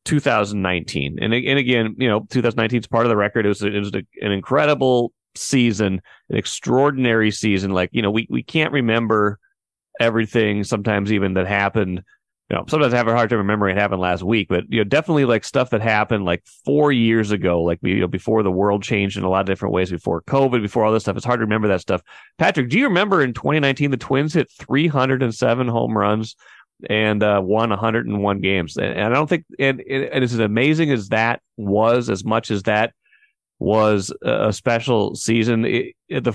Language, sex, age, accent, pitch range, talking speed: English, male, 30-49, American, 105-125 Hz, 205 wpm